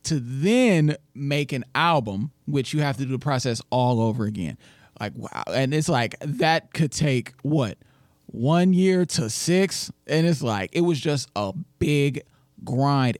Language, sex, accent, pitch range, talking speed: English, male, American, 120-150 Hz, 170 wpm